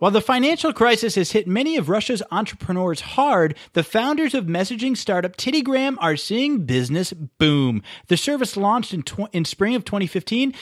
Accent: American